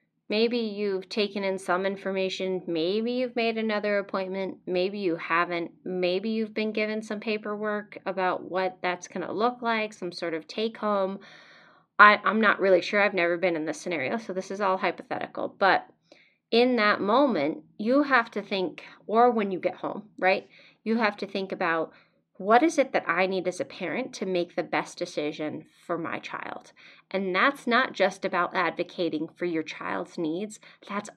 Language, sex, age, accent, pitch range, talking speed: English, female, 30-49, American, 175-210 Hz, 180 wpm